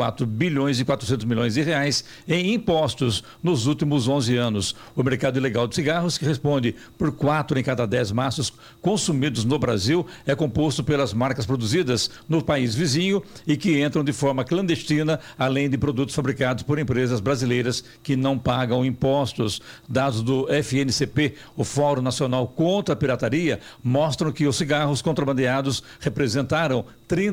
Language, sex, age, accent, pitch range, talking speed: Portuguese, male, 60-79, Brazilian, 130-155 Hz, 150 wpm